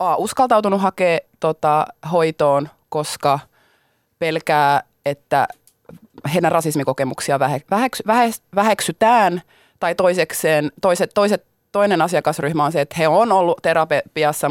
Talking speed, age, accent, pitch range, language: 105 wpm, 30-49, native, 145-190 Hz, Finnish